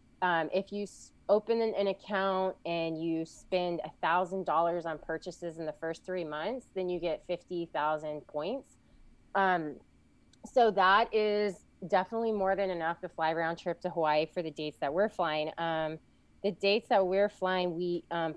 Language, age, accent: English, 20-39, American